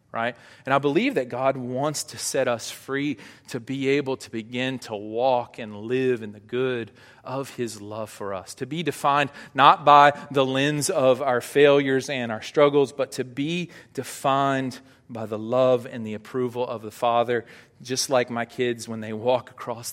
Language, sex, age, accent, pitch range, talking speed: English, male, 40-59, American, 115-135 Hz, 185 wpm